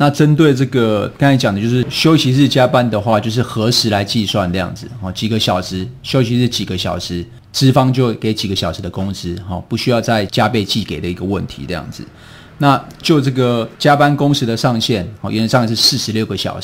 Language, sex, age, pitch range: Chinese, male, 30-49, 100-130 Hz